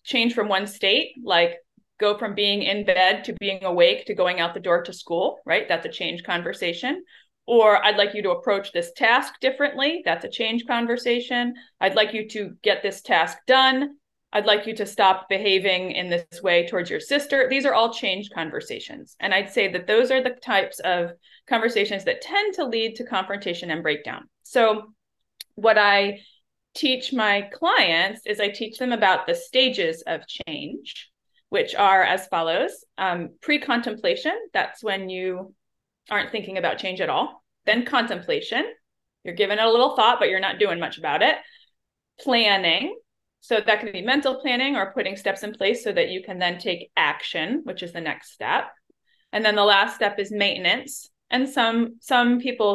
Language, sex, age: English, female, 30-49